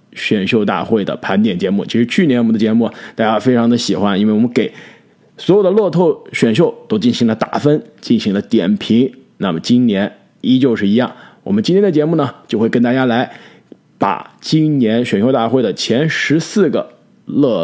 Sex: male